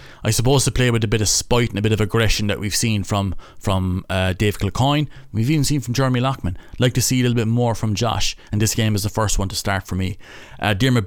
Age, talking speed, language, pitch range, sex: 30-49, 270 wpm, English, 95-115 Hz, male